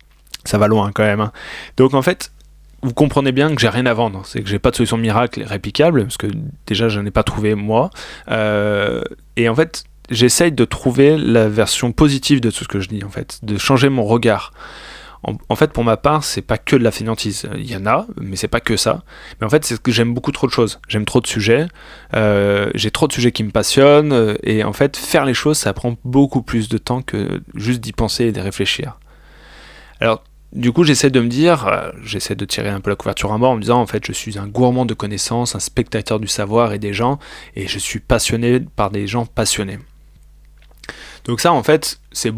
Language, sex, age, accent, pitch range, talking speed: French, male, 20-39, French, 105-130 Hz, 240 wpm